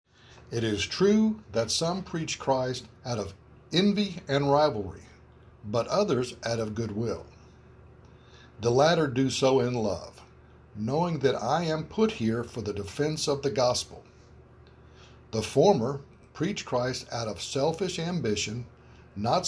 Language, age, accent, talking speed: English, 60-79, American, 135 wpm